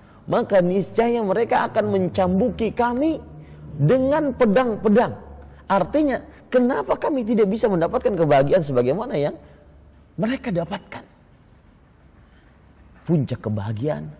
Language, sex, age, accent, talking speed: Indonesian, male, 40-59, native, 90 wpm